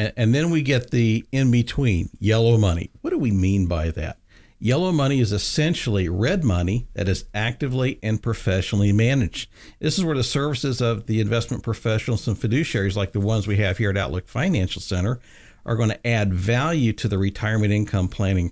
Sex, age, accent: male, 50-69, American